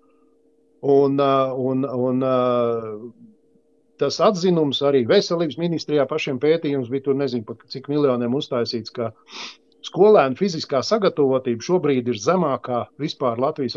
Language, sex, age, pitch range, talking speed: English, male, 50-69, 130-170 Hz, 110 wpm